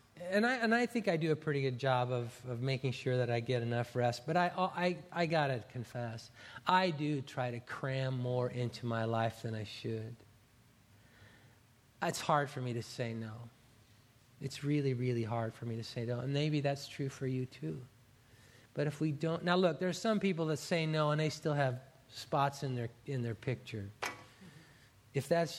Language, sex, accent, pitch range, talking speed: English, male, American, 115-145 Hz, 205 wpm